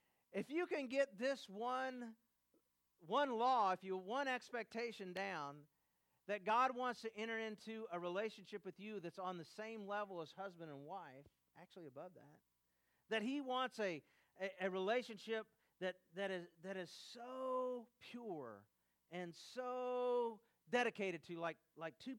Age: 50-69